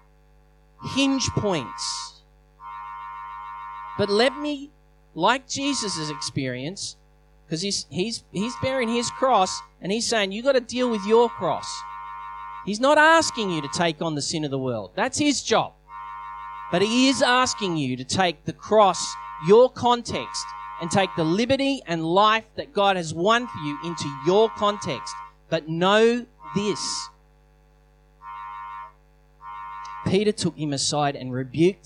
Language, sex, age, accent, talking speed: English, male, 30-49, Australian, 140 wpm